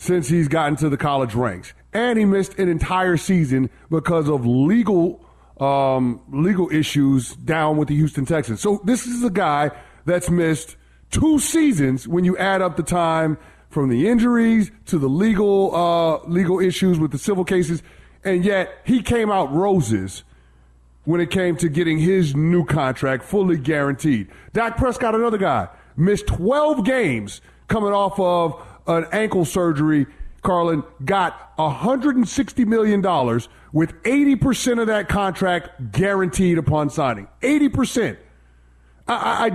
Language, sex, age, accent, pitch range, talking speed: English, male, 30-49, American, 140-195 Hz, 145 wpm